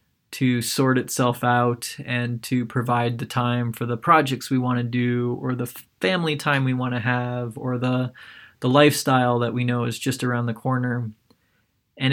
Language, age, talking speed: English, 20-39, 185 wpm